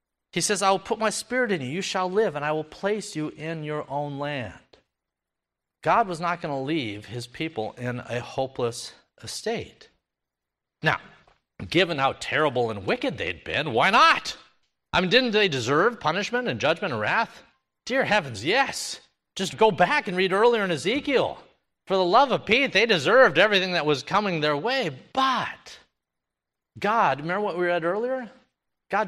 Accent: American